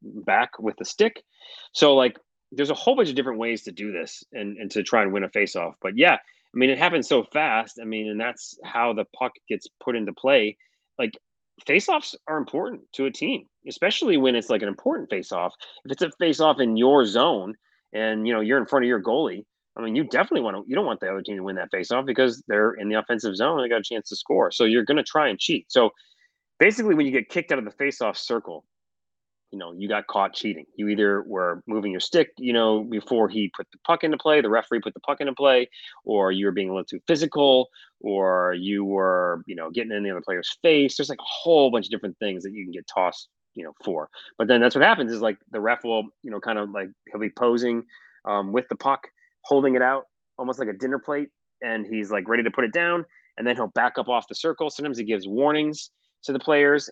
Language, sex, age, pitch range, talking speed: English, male, 30-49, 105-145 Hz, 250 wpm